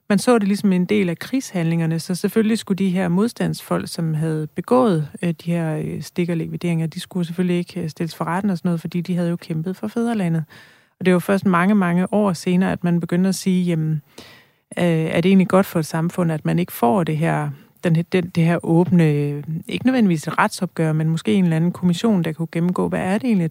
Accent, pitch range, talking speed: native, 165-195 Hz, 220 wpm